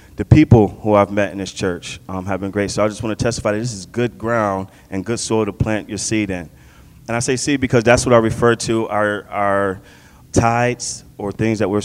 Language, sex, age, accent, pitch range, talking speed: English, male, 30-49, American, 100-120 Hz, 245 wpm